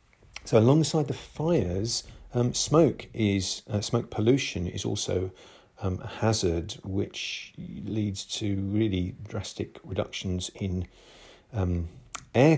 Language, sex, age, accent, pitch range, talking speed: English, male, 40-59, British, 95-115 Hz, 115 wpm